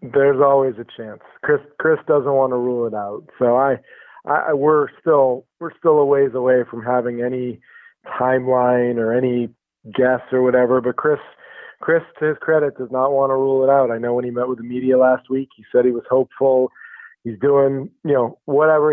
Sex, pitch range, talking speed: male, 125-140 Hz, 205 wpm